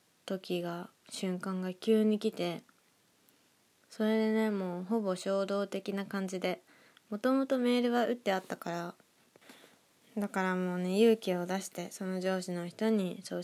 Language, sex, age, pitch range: Japanese, female, 20-39, 185-220 Hz